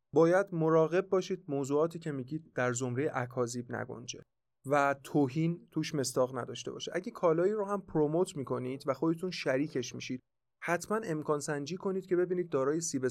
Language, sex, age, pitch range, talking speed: Persian, male, 30-49, 135-175 Hz, 155 wpm